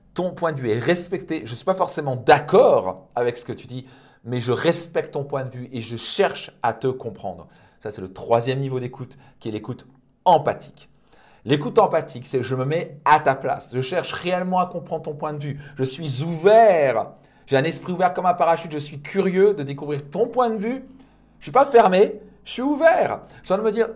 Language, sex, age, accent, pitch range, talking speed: French, male, 40-59, French, 135-195 Hz, 225 wpm